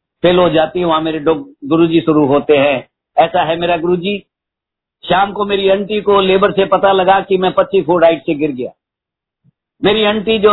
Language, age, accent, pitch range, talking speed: Hindi, 50-69, native, 175-195 Hz, 195 wpm